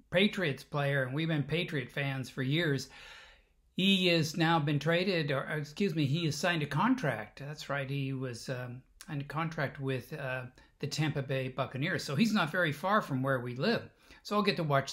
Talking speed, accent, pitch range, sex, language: 195 wpm, American, 130-165 Hz, male, English